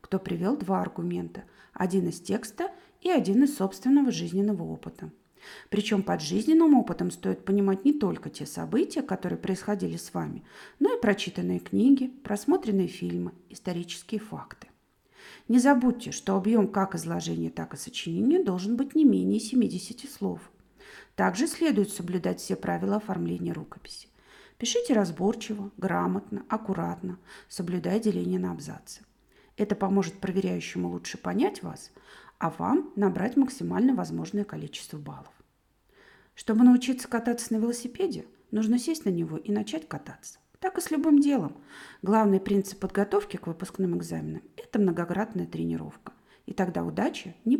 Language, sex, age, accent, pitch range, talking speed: Russian, female, 40-59, native, 185-245 Hz, 135 wpm